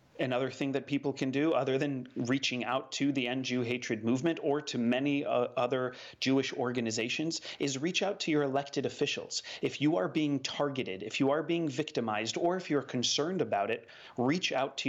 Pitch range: 125-145 Hz